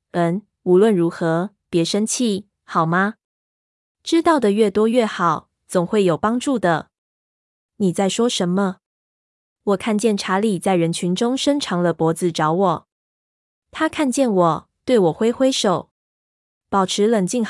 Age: 20-39